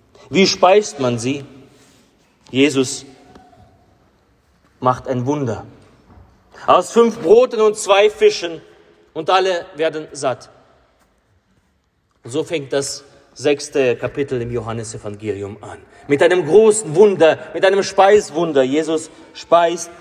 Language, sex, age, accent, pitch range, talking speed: German, male, 30-49, German, 130-210 Hz, 105 wpm